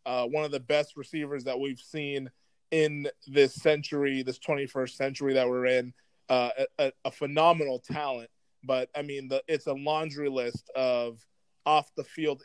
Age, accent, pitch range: 20-39, American, 130-160 Hz